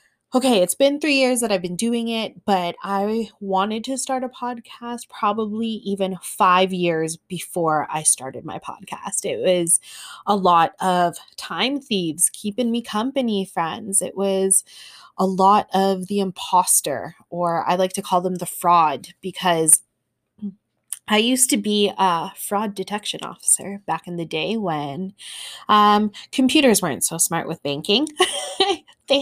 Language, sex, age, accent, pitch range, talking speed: English, female, 20-39, American, 180-240 Hz, 150 wpm